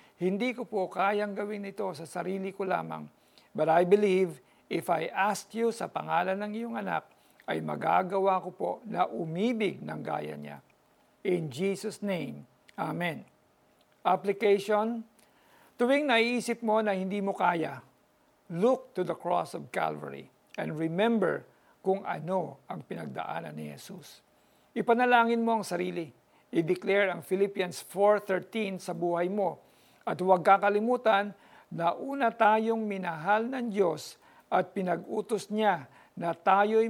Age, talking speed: 50-69, 135 wpm